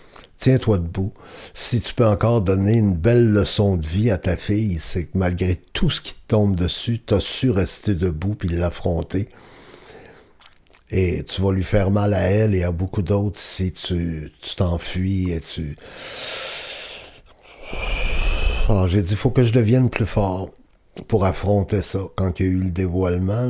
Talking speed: 175 wpm